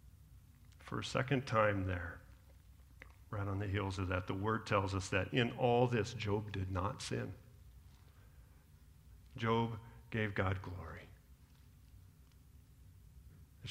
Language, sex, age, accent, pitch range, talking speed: English, male, 50-69, American, 85-135 Hz, 125 wpm